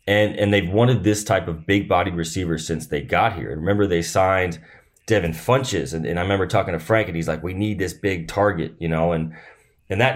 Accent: American